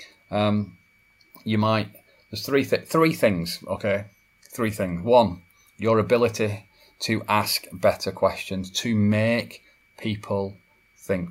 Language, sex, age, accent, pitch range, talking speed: English, male, 30-49, British, 95-110 Hz, 115 wpm